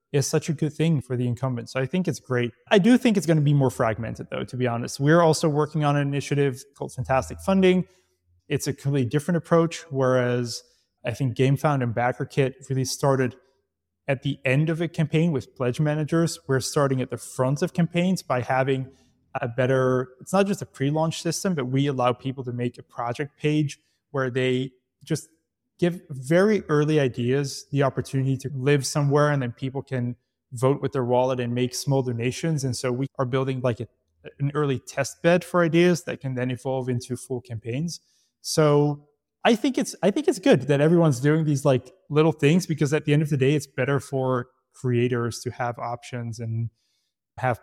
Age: 20-39